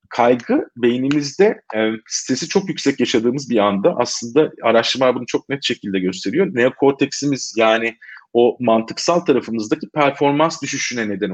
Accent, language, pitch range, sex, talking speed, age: native, Turkish, 110-155 Hz, male, 125 wpm, 40-59